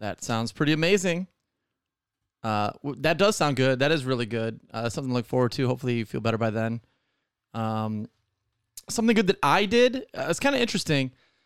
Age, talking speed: 30-49, 190 wpm